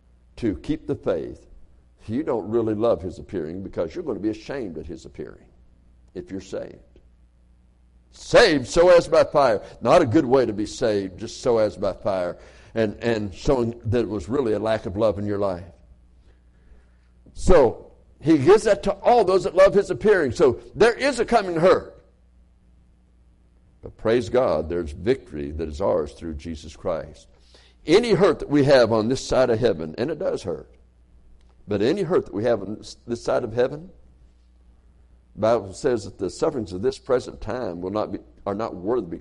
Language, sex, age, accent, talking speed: English, male, 60-79, American, 190 wpm